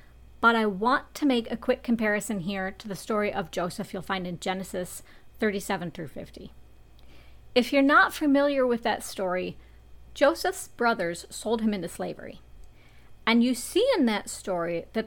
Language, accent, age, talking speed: English, American, 40-59, 165 wpm